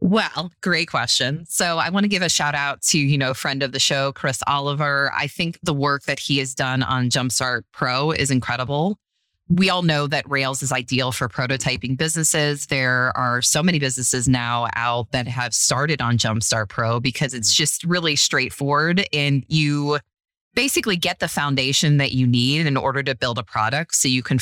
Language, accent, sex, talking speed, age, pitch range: English, American, female, 195 wpm, 20-39, 130-155 Hz